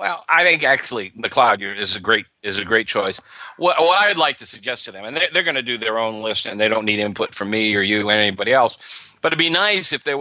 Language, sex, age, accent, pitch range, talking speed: English, male, 50-69, American, 110-130 Hz, 290 wpm